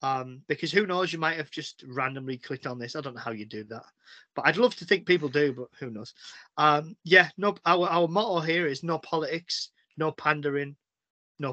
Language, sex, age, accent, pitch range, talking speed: English, male, 20-39, British, 140-180 Hz, 220 wpm